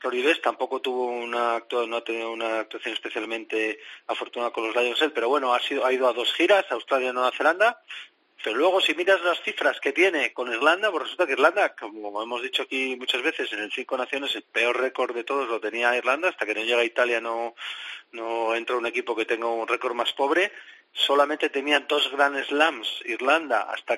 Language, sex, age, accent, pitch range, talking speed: Spanish, male, 40-59, Spanish, 120-140 Hz, 210 wpm